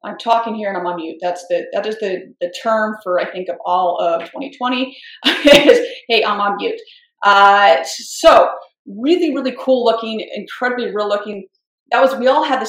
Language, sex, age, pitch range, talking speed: English, female, 30-49, 195-265 Hz, 195 wpm